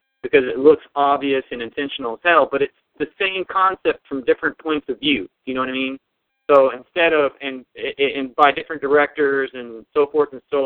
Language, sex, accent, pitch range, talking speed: English, male, American, 135-165 Hz, 205 wpm